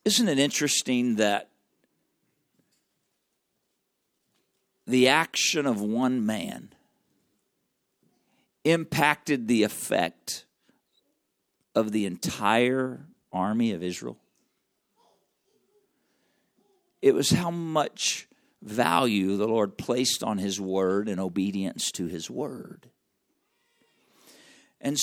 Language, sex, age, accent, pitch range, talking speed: English, male, 50-69, American, 95-130 Hz, 85 wpm